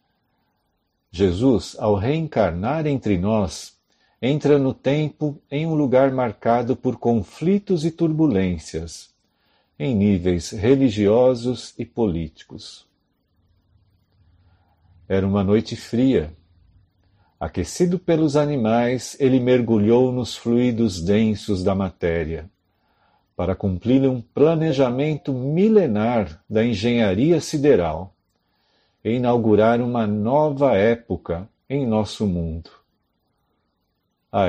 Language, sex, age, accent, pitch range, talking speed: Portuguese, male, 50-69, Brazilian, 95-135 Hz, 90 wpm